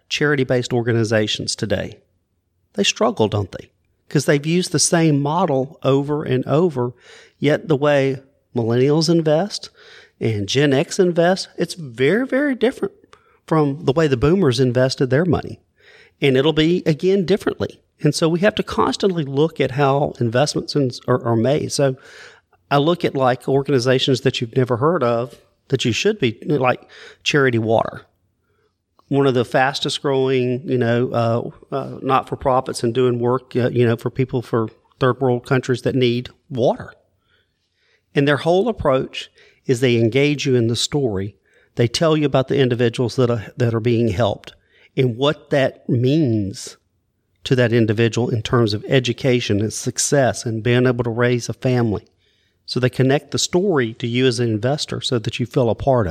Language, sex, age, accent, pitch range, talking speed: English, male, 40-59, American, 120-150 Hz, 165 wpm